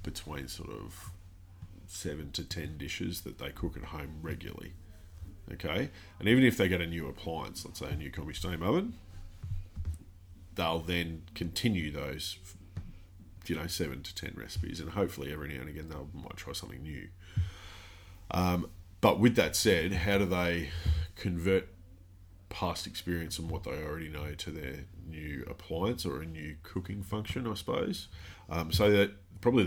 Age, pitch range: 30-49, 80-90 Hz